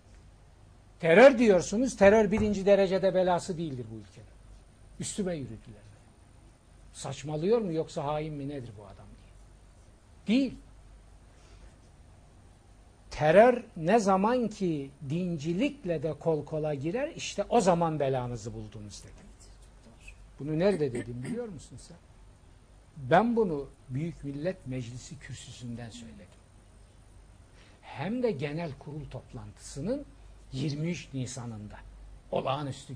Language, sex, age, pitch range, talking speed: Turkish, male, 60-79, 105-165 Hz, 105 wpm